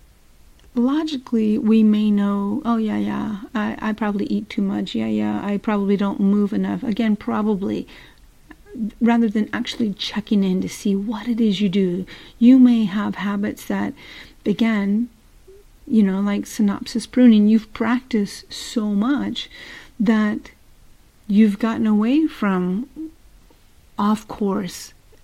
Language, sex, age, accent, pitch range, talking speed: English, female, 50-69, American, 205-245 Hz, 135 wpm